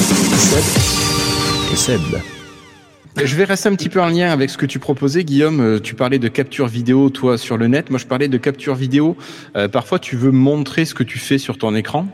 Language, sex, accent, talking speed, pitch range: French, male, French, 200 wpm, 110-135 Hz